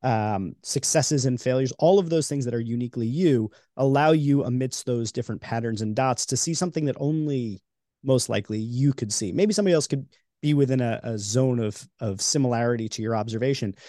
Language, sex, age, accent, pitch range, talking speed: English, male, 30-49, American, 115-145 Hz, 195 wpm